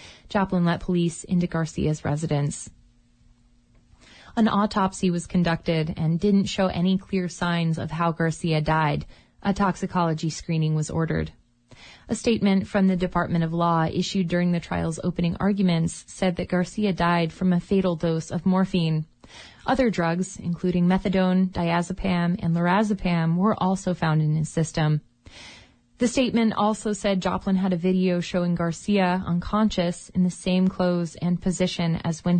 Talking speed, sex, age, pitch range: 150 wpm, female, 20-39, 165-190 Hz